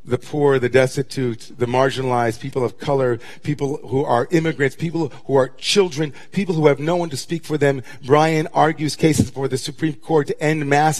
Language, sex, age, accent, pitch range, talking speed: English, male, 40-59, American, 140-175 Hz, 195 wpm